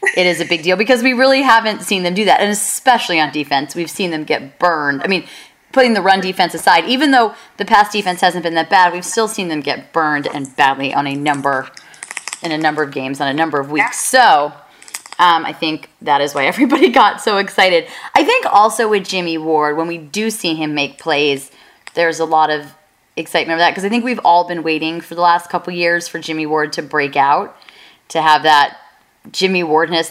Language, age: English, 30-49